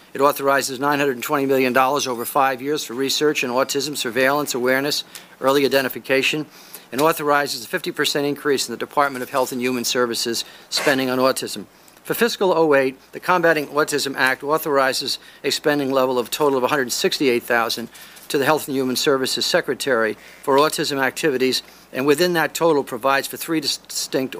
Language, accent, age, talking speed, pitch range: English, American, 50-69, 155 wpm, 130-150 Hz